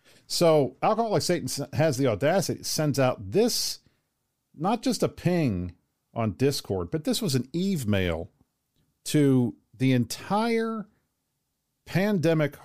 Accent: American